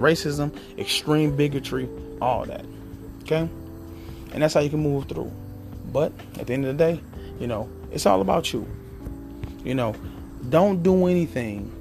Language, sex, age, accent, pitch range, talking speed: English, male, 20-39, American, 100-140 Hz, 160 wpm